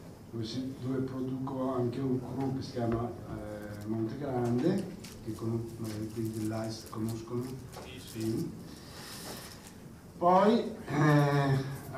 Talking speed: 90 wpm